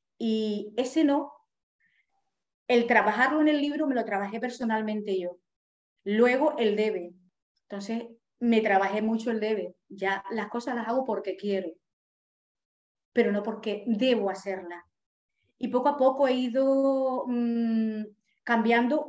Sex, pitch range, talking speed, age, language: female, 200-245 Hz, 130 wpm, 30-49, Spanish